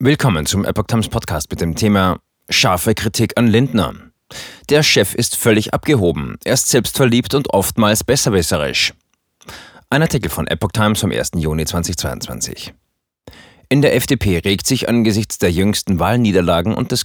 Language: German